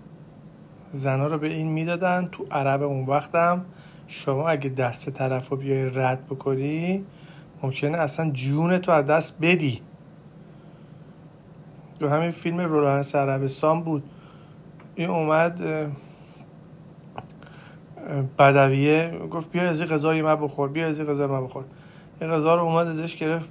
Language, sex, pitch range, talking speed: Persian, male, 145-170 Hz, 125 wpm